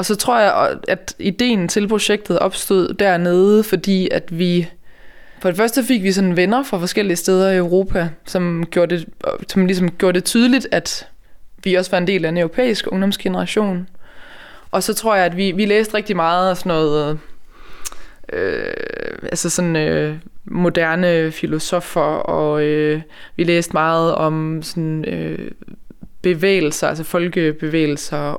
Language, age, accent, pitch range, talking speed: Danish, 20-39, native, 170-200 Hz, 155 wpm